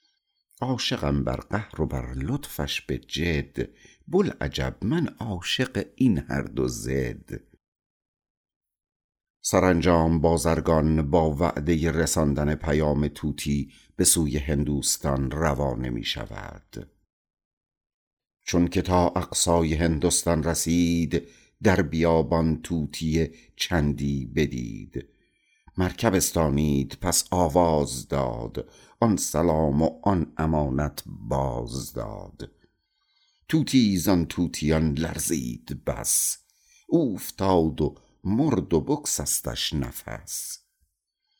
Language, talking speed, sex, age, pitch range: Persian, 95 wpm, male, 50-69, 75-90 Hz